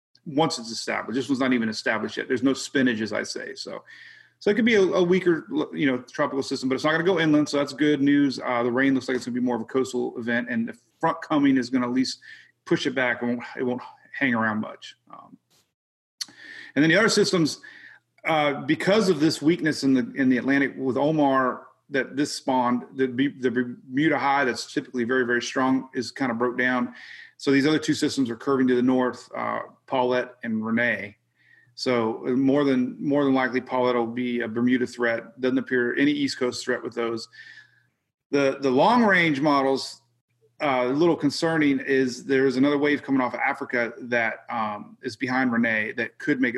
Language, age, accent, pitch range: English, 30-49, American, 120-145 Hz